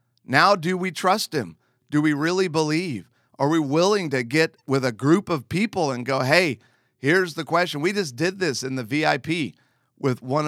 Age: 40-59